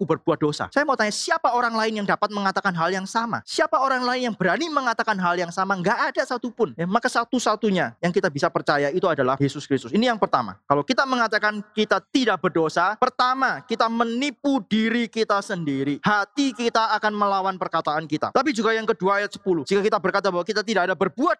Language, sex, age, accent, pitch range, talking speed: Indonesian, male, 20-39, native, 170-235 Hz, 200 wpm